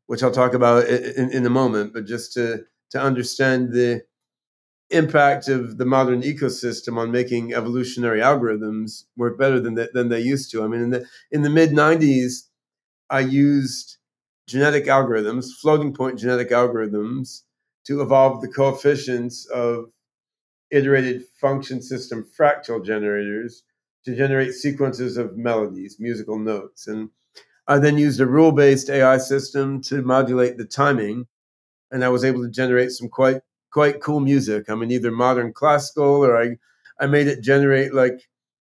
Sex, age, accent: male, 40-59, American